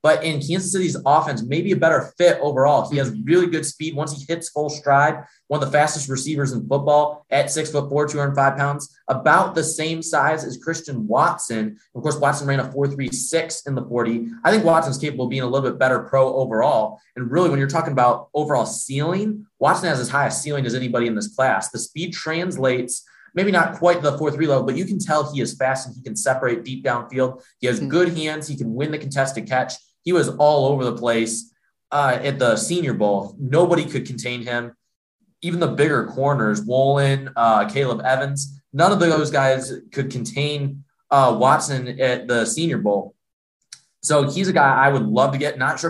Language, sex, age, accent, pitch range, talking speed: English, male, 20-39, American, 125-155 Hz, 205 wpm